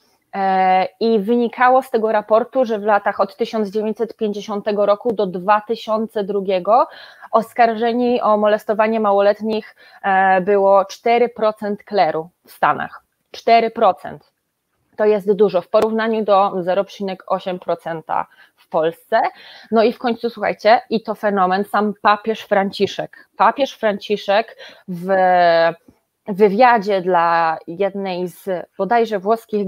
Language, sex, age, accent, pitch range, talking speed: Polish, female, 20-39, native, 190-225 Hz, 105 wpm